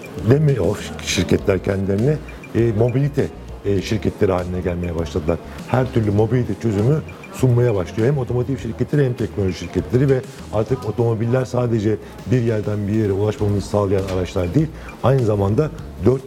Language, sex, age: Turkish, male, 50-69